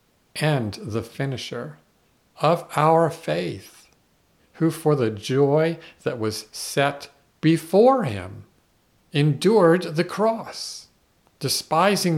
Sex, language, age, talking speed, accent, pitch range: male, English, 50-69, 95 wpm, American, 115-165 Hz